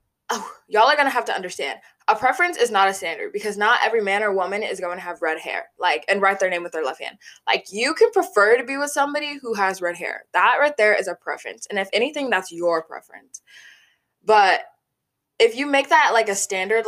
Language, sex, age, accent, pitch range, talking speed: English, female, 20-39, American, 185-275 Hz, 230 wpm